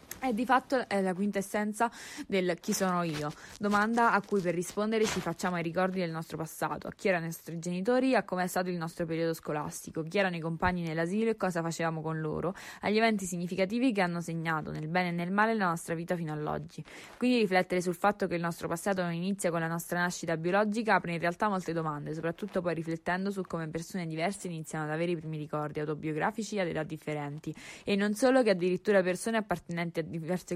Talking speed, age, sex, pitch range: 215 wpm, 20-39, female, 165-195 Hz